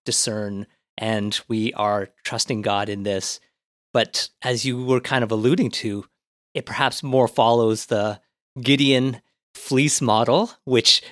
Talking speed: 135 wpm